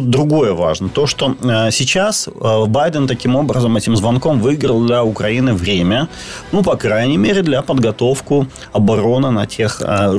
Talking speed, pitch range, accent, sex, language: 155 wpm, 105-140 Hz, native, male, Ukrainian